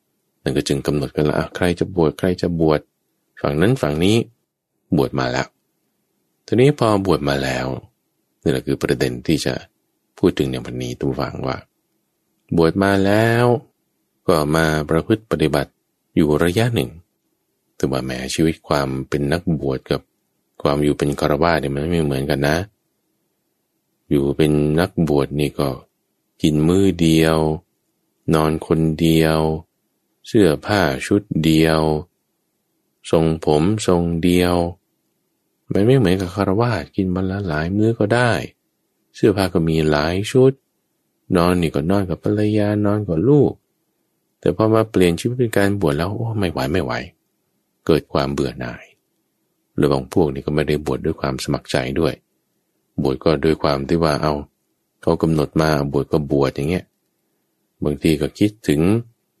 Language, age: English, 20-39